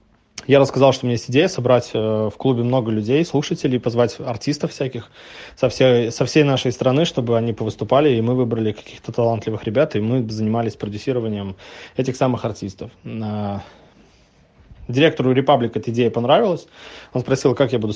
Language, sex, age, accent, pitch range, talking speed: Russian, male, 20-39, native, 110-130 Hz, 155 wpm